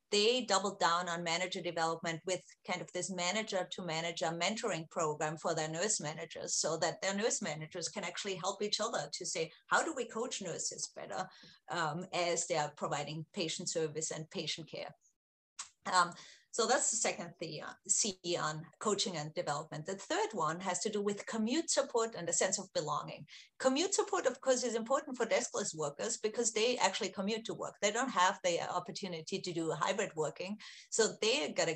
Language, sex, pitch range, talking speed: English, female, 170-215 Hz, 185 wpm